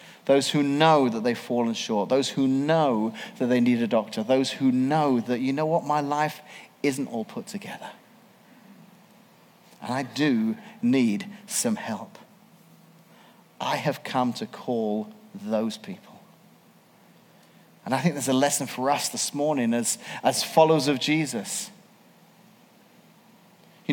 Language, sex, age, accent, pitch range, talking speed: English, male, 40-59, British, 145-205 Hz, 145 wpm